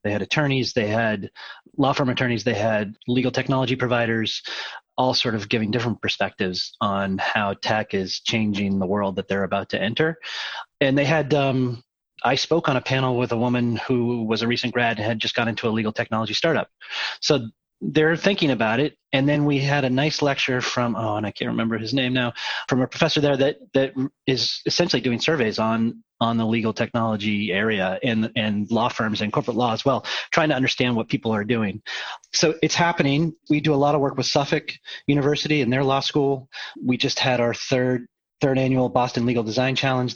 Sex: male